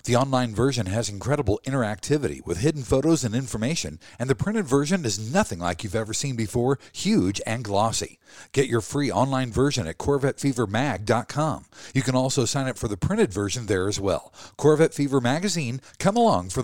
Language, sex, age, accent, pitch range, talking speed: English, male, 50-69, American, 110-145 Hz, 180 wpm